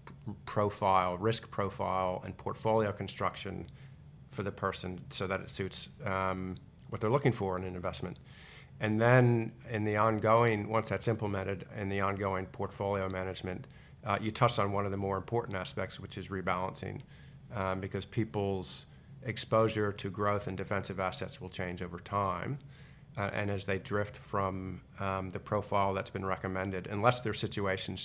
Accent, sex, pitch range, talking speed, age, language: American, male, 95-110 Hz, 160 wpm, 40-59, English